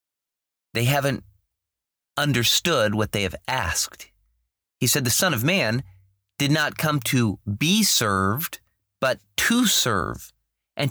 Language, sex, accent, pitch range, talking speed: English, male, American, 105-150 Hz, 125 wpm